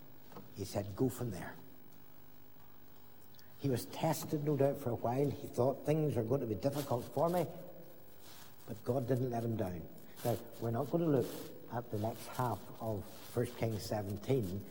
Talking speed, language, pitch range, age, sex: 175 wpm, English, 110-130 Hz, 60-79, male